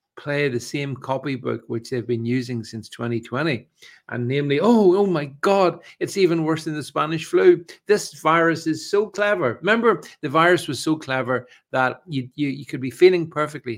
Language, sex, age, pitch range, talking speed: English, male, 50-69, 120-155 Hz, 185 wpm